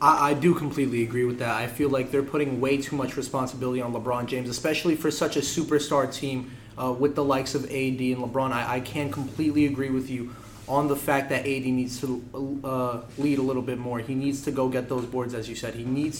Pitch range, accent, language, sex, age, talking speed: 130-155 Hz, American, English, male, 20-39, 235 wpm